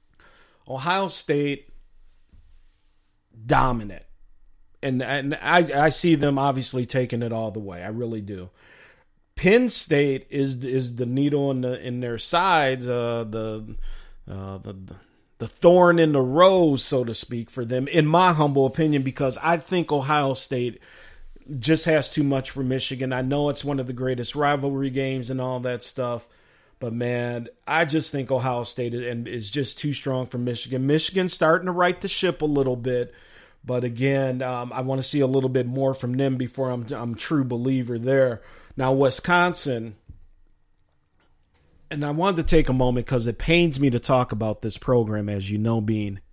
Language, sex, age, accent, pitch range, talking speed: English, male, 40-59, American, 115-145 Hz, 175 wpm